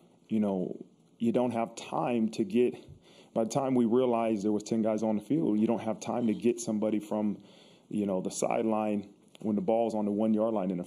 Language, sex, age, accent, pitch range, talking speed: English, male, 30-49, American, 105-120 Hz, 230 wpm